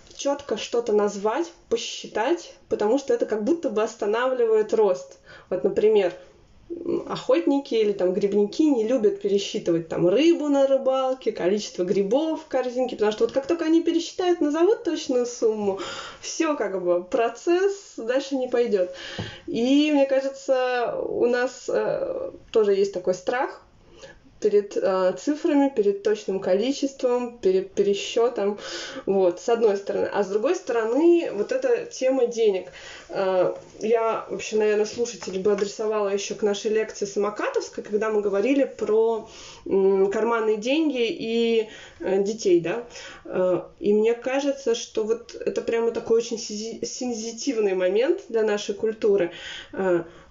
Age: 20-39